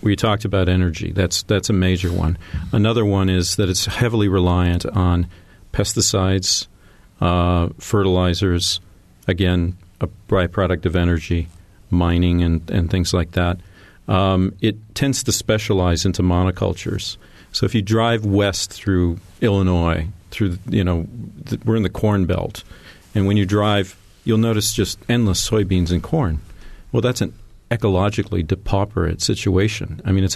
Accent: American